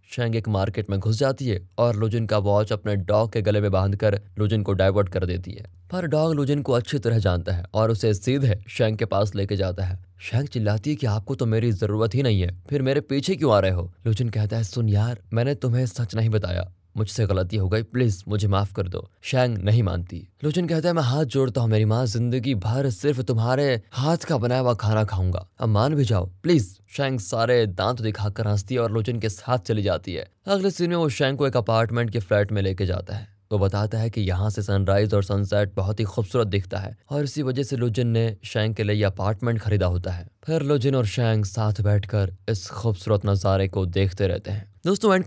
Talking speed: 230 wpm